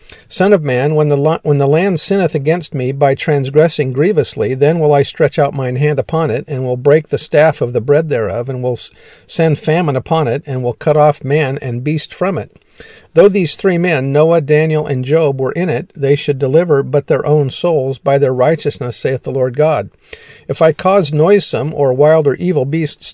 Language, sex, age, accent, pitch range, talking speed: English, male, 50-69, American, 135-155 Hz, 210 wpm